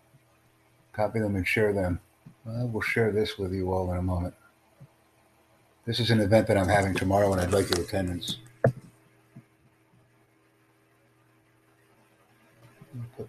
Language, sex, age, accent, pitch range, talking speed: English, male, 60-79, American, 90-110 Hz, 130 wpm